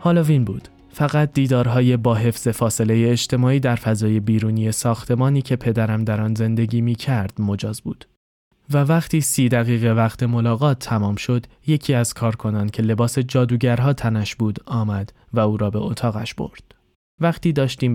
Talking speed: 150 wpm